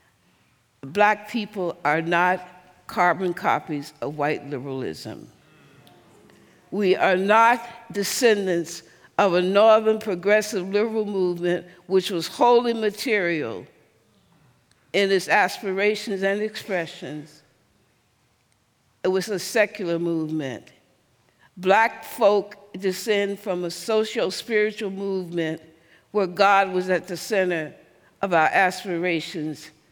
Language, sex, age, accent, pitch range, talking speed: English, female, 60-79, American, 170-210 Hz, 100 wpm